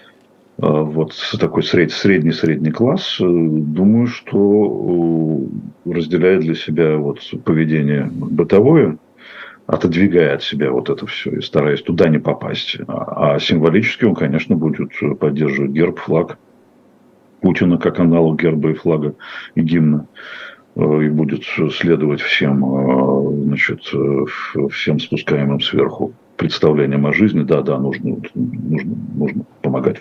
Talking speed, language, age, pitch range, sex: 110 wpm, Russian, 50-69, 75-85 Hz, male